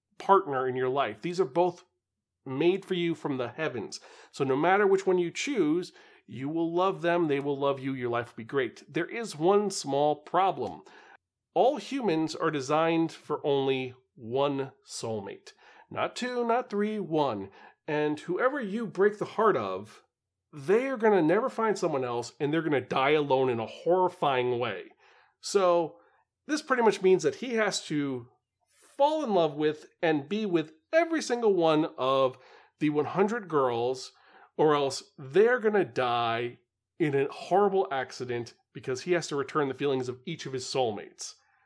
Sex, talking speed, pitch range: male, 175 wpm, 140-210 Hz